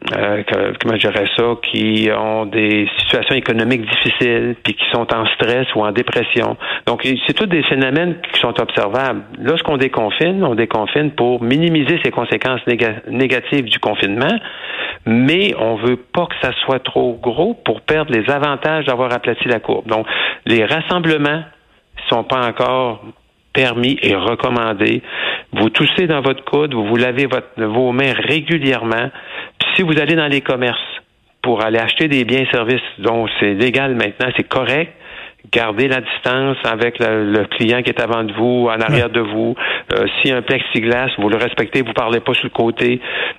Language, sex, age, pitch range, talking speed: French, male, 50-69, 115-145 Hz, 180 wpm